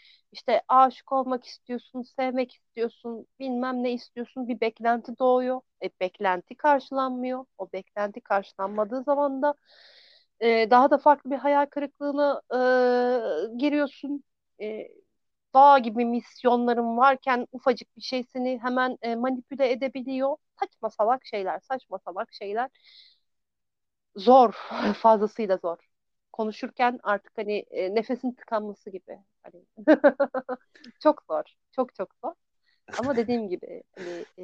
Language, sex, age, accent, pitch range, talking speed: Turkish, female, 40-59, native, 200-255 Hz, 105 wpm